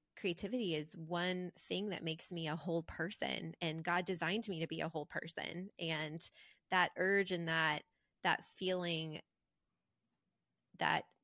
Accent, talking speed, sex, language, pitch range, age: American, 145 wpm, female, English, 165-190 Hz, 20-39